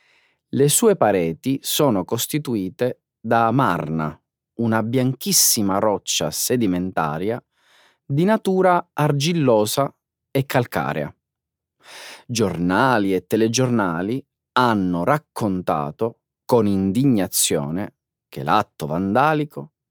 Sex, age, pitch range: male, 30-49, 90-135 Hz